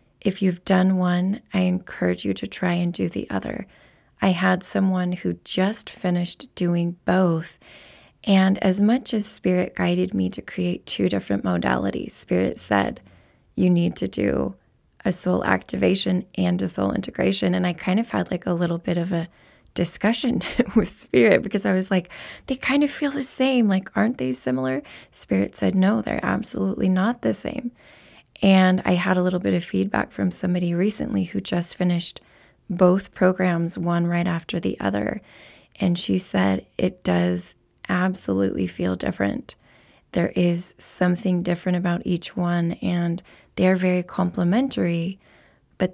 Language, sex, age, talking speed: English, female, 20-39, 160 wpm